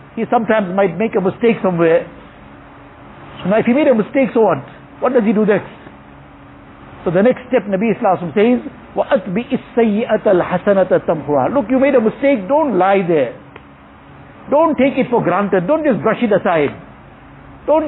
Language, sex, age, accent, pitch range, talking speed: English, male, 60-79, Indian, 190-255 Hz, 170 wpm